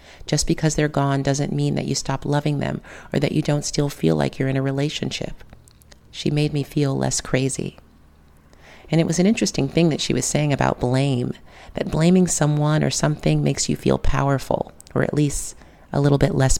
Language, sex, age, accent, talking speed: English, female, 40-59, American, 205 wpm